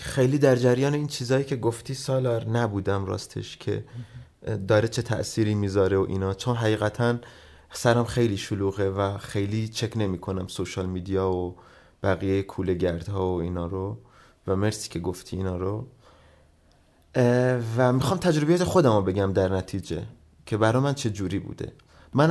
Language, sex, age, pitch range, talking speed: Persian, male, 30-49, 95-130 Hz, 150 wpm